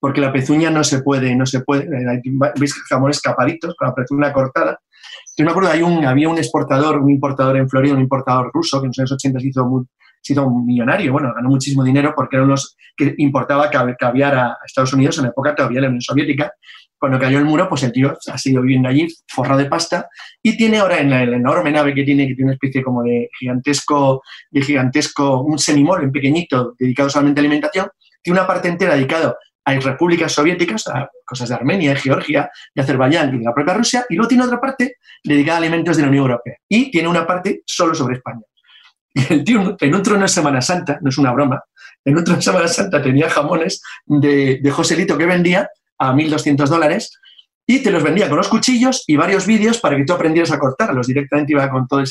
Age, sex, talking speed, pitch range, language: 20-39, male, 225 wpm, 135-170 Hz, Spanish